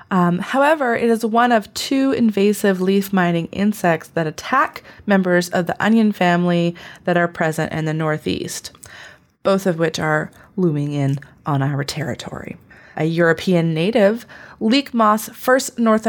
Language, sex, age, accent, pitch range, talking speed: English, female, 30-49, American, 160-210 Hz, 150 wpm